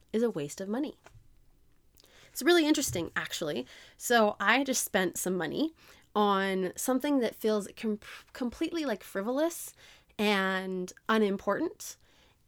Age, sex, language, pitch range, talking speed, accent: 20-39, female, English, 185-250 Hz, 115 wpm, American